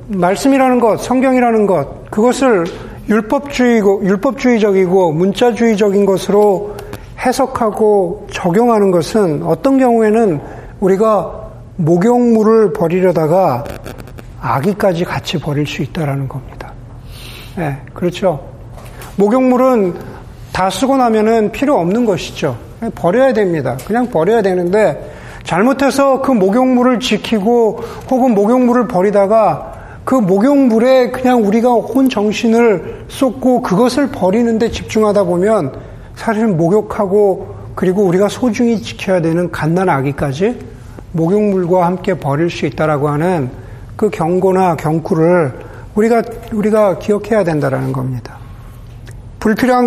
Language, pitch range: Korean, 160-230 Hz